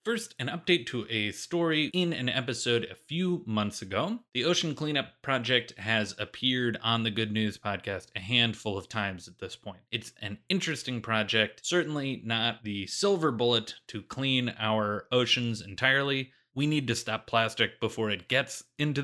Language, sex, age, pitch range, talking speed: English, male, 30-49, 110-145 Hz, 170 wpm